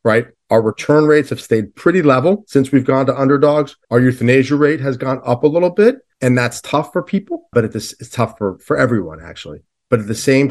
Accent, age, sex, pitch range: American, 40-59, male, 105-140 Hz